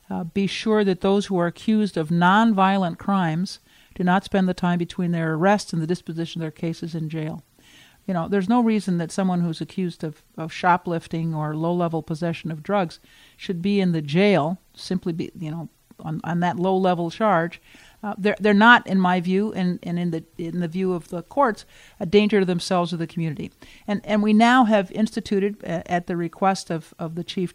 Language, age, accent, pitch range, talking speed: English, 50-69, American, 165-200 Hz, 210 wpm